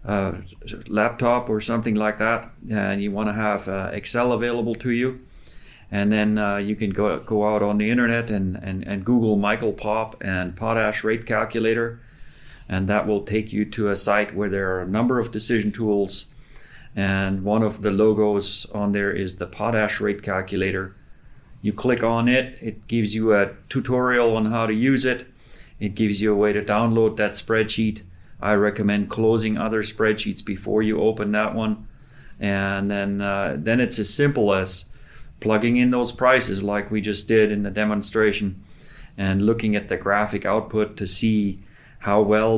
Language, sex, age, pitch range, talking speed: English, male, 40-59, 100-115 Hz, 180 wpm